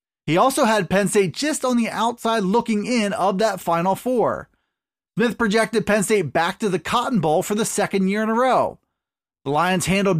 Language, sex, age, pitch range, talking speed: English, male, 30-49, 190-245 Hz, 200 wpm